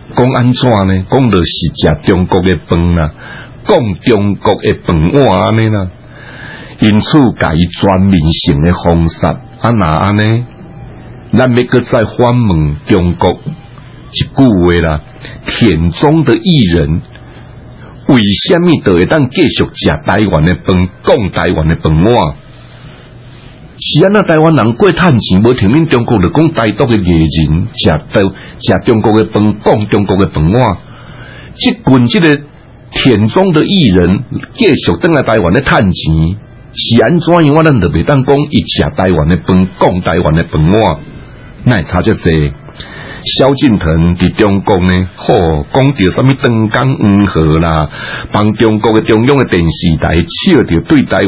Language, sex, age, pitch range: Chinese, male, 60-79, 90-130 Hz